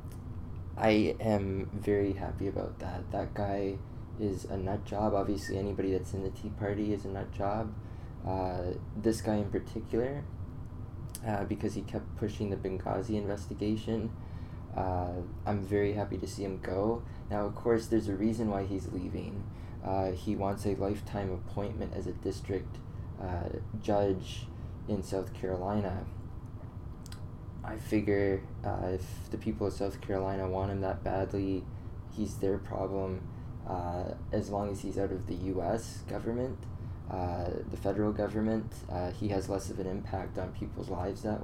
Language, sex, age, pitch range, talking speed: English, male, 20-39, 95-110 Hz, 155 wpm